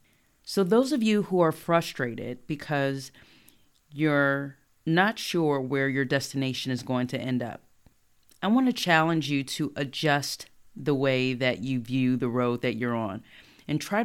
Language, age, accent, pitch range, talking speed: English, 40-59, American, 130-165 Hz, 160 wpm